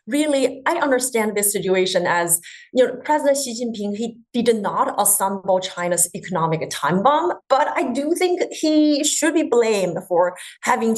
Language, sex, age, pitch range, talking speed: English, female, 30-49, 185-260 Hz, 160 wpm